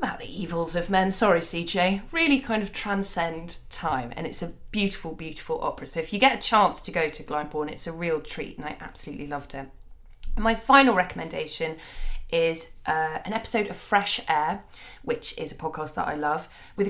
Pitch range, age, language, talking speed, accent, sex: 160-205 Hz, 20-39, English, 195 wpm, British, female